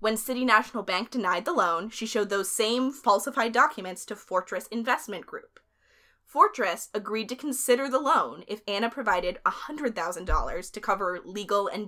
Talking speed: 155 wpm